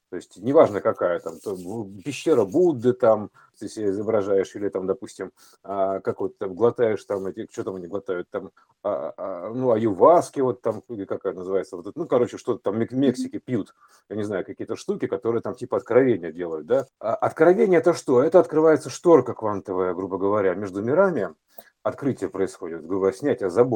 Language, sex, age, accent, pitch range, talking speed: Russian, male, 50-69, native, 120-160 Hz, 170 wpm